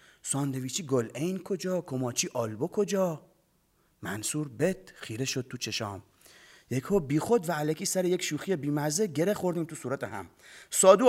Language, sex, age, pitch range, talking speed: Persian, male, 30-49, 130-195 Hz, 160 wpm